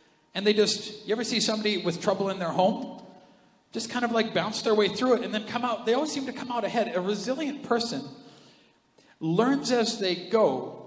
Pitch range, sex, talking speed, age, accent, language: 155-225 Hz, male, 215 wpm, 40-59, American, English